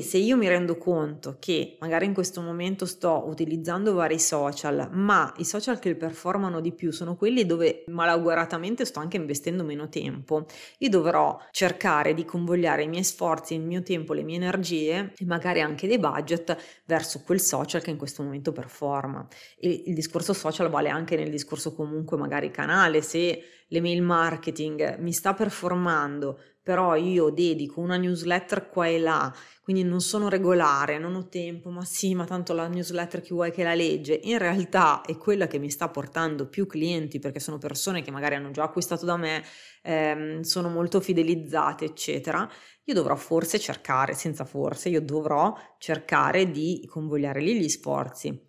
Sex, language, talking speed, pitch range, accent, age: female, Italian, 170 wpm, 155-175 Hz, native, 30-49